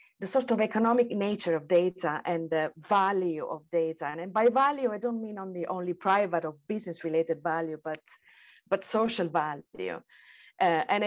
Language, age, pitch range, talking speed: English, 30-49, 165-215 Hz, 165 wpm